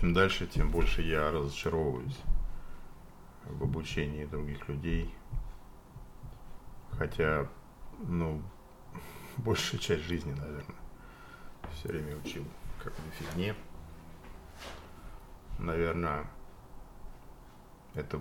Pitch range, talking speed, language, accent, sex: 70-85 Hz, 80 wpm, Russian, native, male